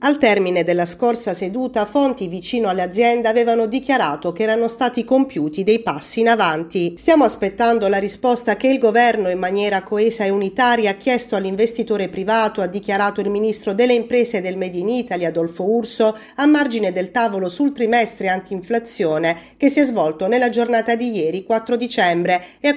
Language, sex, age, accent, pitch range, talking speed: Italian, female, 40-59, native, 185-240 Hz, 175 wpm